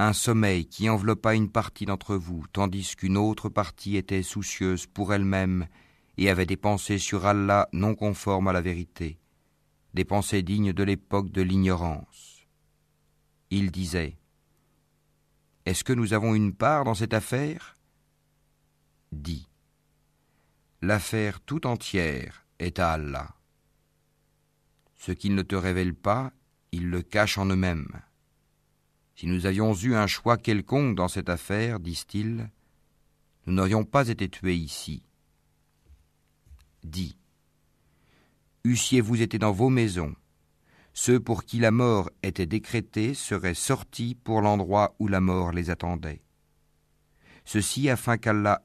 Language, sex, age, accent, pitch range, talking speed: French, male, 50-69, French, 80-110 Hz, 130 wpm